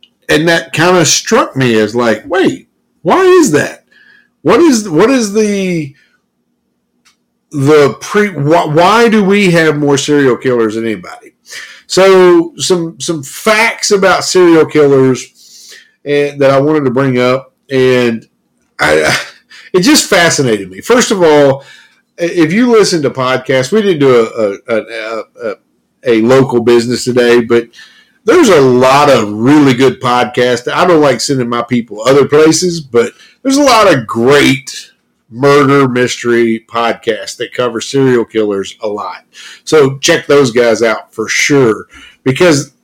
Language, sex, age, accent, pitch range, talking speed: English, male, 50-69, American, 120-170 Hz, 150 wpm